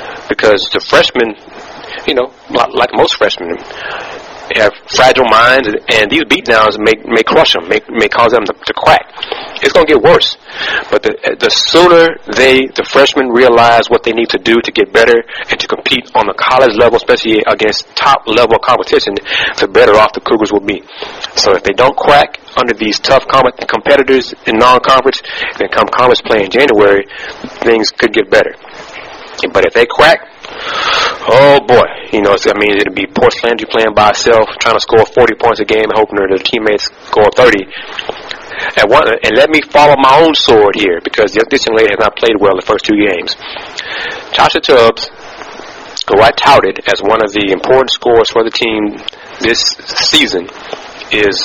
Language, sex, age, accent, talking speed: English, male, 30-49, American, 180 wpm